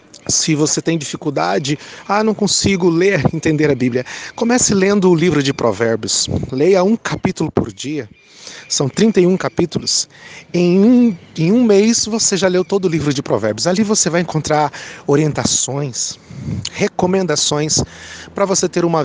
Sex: male